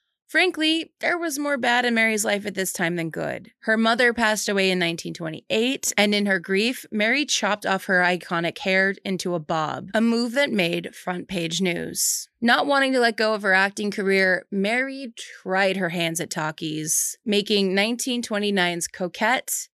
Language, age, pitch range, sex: English, 20-39, 185-235 Hz, female